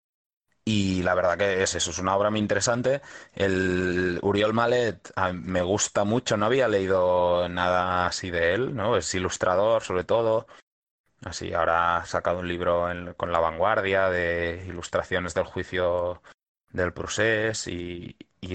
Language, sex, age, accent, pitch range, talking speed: Spanish, male, 20-39, Spanish, 90-110 Hz, 150 wpm